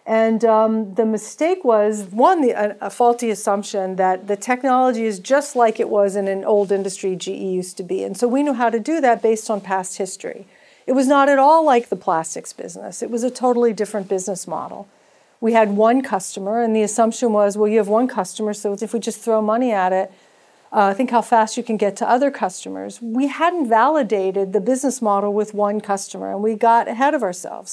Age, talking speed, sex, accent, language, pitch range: 40-59, 215 wpm, female, American, English, 200-250 Hz